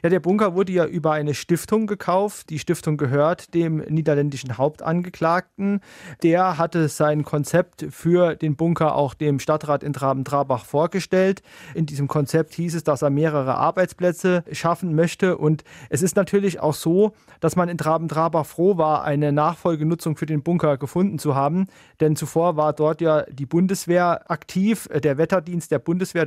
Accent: German